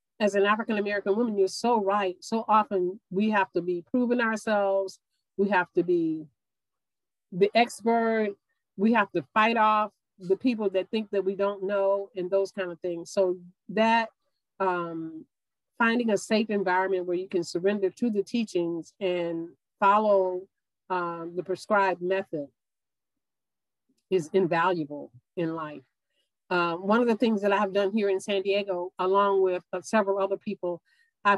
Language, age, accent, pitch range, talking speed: English, 40-59, American, 175-205 Hz, 160 wpm